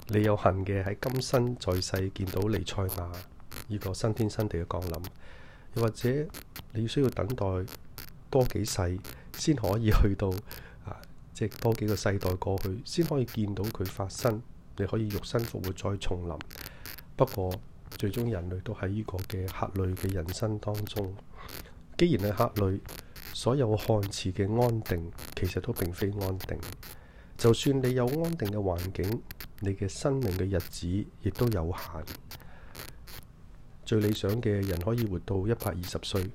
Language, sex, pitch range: Chinese, male, 95-115 Hz